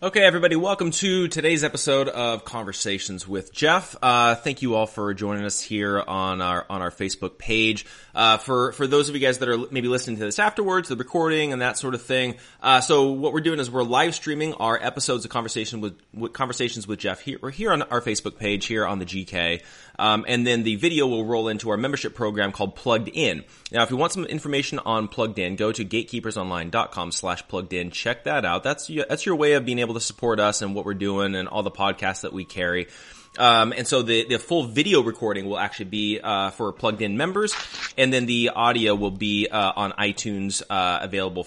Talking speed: 220 wpm